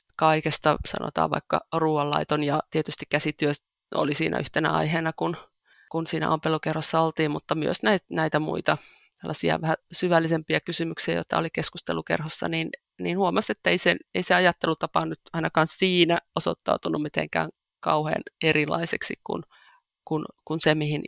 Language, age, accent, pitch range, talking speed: Finnish, 20-39, native, 150-175 Hz, 130 wpm